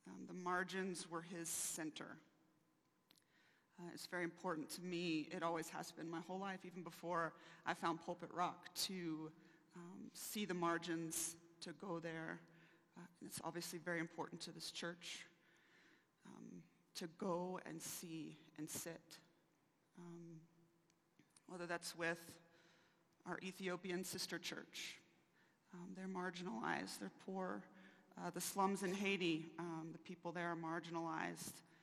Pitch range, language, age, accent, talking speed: 165-175 Hz, English, 30-49, American, 135 wpm